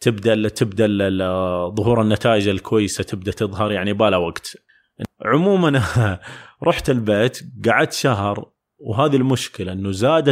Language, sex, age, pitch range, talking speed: Arabic, male, 30-49, 110-150 Hz, 110 wpm